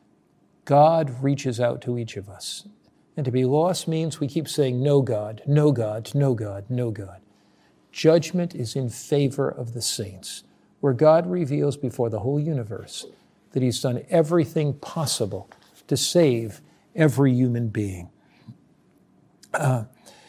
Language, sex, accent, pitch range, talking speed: English, male, American, 115-150 Hz, 140 wpm